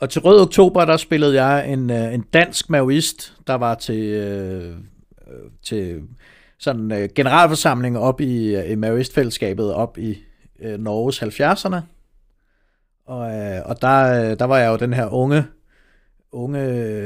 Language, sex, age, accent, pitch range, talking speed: Danish, male, 60-79, native, 115-150 Hz, 125 wpm